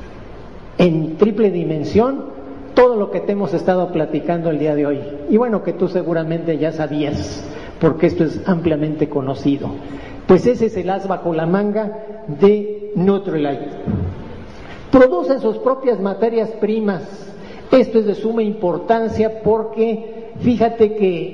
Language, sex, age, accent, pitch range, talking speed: Spanish, male, 50-69, Mexican, 170-225 Hz, 140 wpm